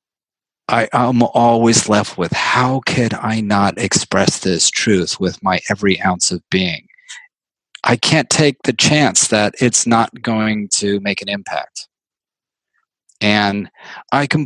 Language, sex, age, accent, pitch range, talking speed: English, male, 40-59, American, 105-130 Hz, 135 wpm